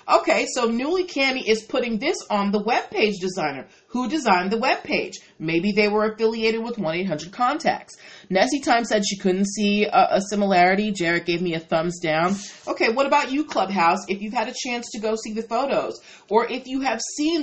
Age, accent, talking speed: 30-49, American, 205 wpm